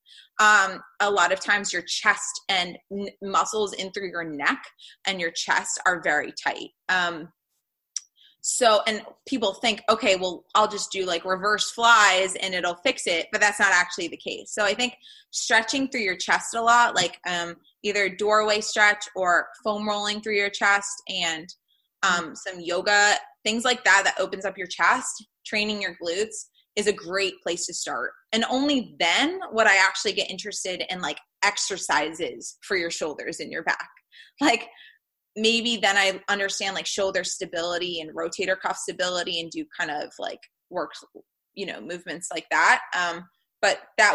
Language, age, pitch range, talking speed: English, 20-39, 175-215 Hz, 170 wpm